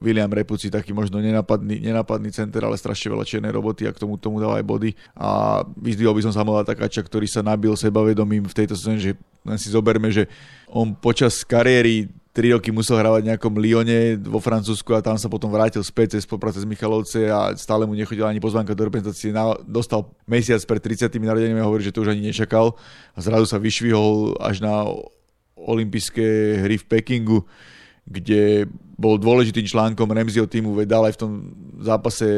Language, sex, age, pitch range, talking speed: Slovak, male, 30-49, 105-115 Hz, 185 wpm